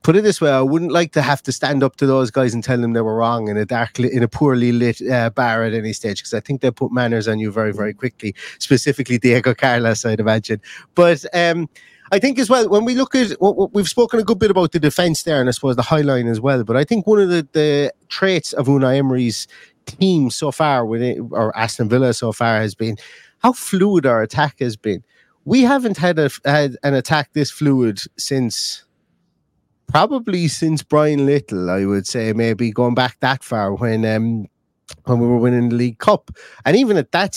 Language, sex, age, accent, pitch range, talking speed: English, male, 30-49, British, 115-150 Hz, 225 wpm